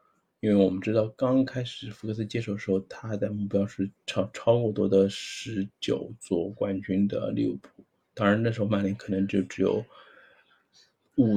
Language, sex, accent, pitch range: Chinese, male, native, 95-120 Hz